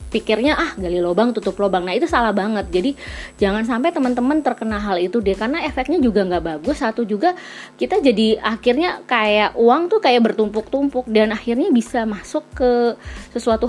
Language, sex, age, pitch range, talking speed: Indonesian, female, 20-39, 200-275 Hz, 170 wpm